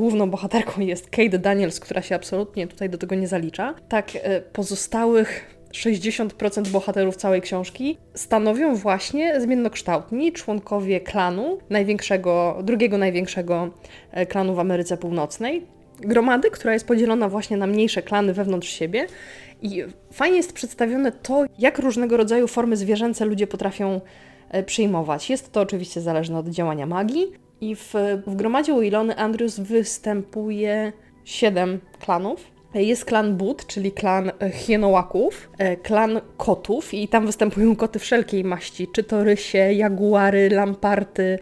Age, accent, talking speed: 20-39, native, 130 wpm